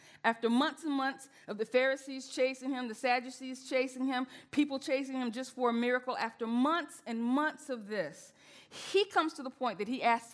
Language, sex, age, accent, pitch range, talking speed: English, female, 40-59, American, 170-250 Hz, 195 wpm